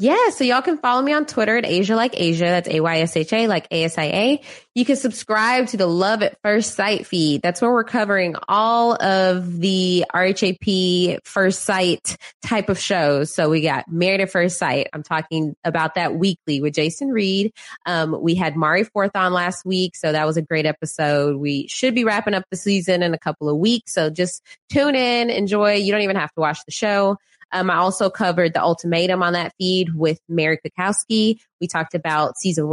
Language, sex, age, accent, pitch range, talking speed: English, female, 20-39, American, 170-220 Hz, 200 wpm